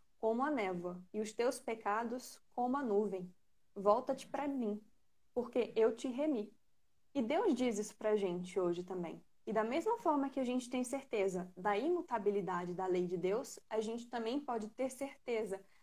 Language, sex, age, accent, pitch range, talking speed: Portuguese, female, 20-39, Brazilian, 205-265 Hz, 175 wpm